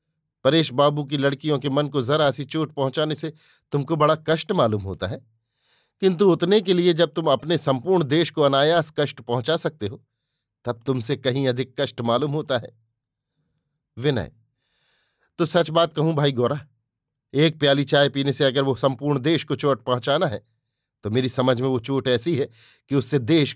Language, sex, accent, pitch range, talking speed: Hindi, male, native, 125-150 Hz, 185 wpm